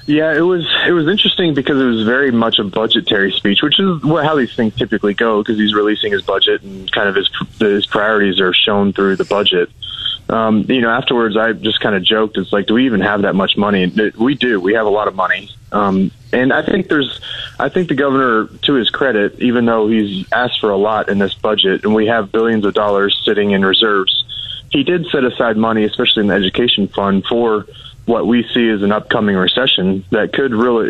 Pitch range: 105-130 Hz